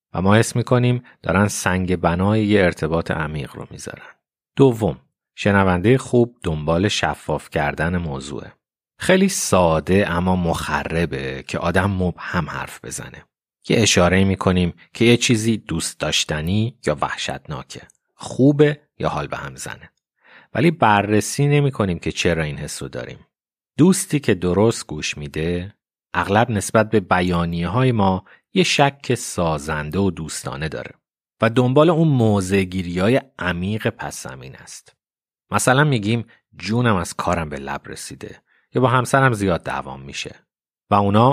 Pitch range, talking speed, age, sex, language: 85-120 Hz, 135 wpm, 30-49, male, Persian